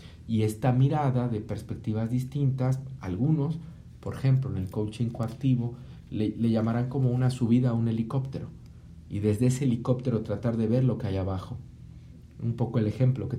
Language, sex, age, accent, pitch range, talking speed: Spanish, male, 50-69, Mexican, 110-140 Hz, 170 wpm